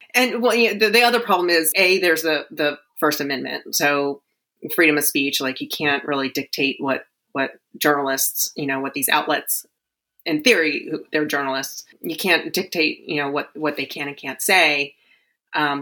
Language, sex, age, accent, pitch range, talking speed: English, female, 30-49, American, 145-175 Hz, 185 wpm